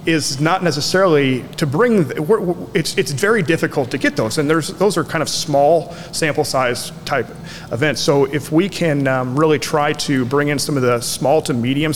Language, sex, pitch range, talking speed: English, male, 130-165 Hz, 195 wpm